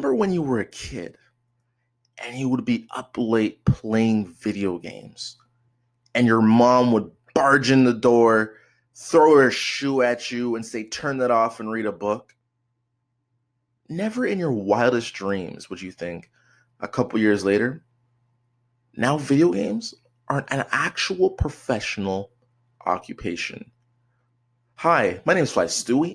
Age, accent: 20-39, American